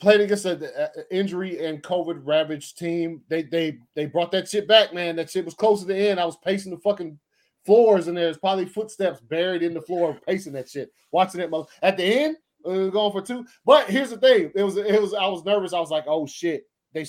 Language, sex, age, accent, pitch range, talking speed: English, male, 20-39, American, 150-205 Hz, 230 wpm